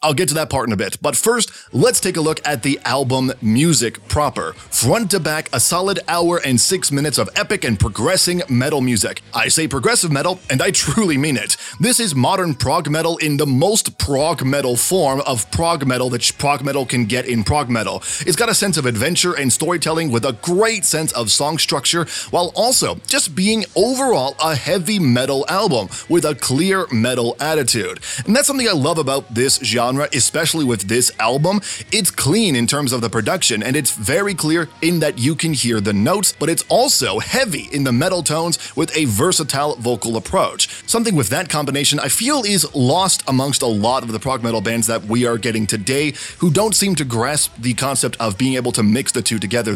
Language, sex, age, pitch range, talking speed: English, male, 30-49, 125-170 Hz, 210 wpm